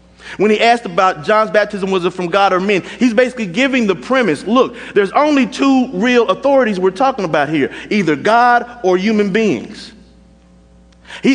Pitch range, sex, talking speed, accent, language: 165-225 Hz, male, 175 wpm, American, English